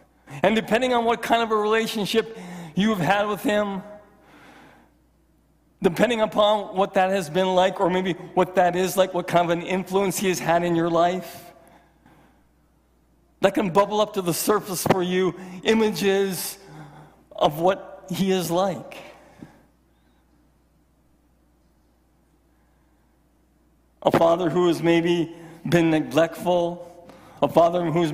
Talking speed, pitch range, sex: 130 wpm, 160-185 Hz, male